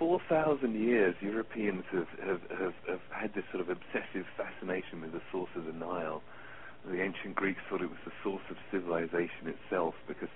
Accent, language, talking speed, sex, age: British, English, 175 wpm, male, 40-59